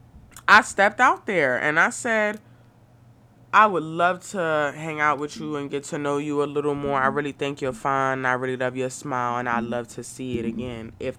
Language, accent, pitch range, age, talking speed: English, American, 120-160 Hz, 20-39, 220 wpm